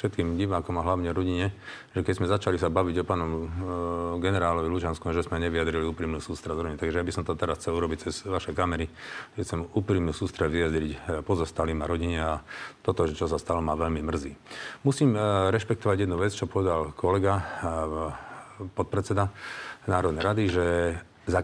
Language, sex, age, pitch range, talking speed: Slovak, male, 40-59, 85-105 Hz, 175 wpm